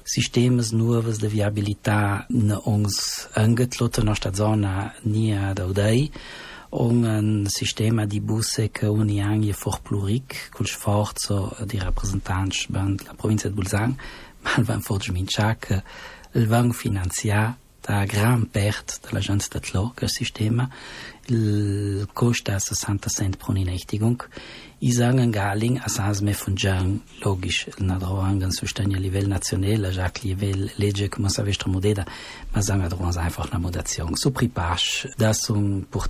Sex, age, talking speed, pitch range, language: male, 40-59, 115 wpm, 100-115 Hz, Italian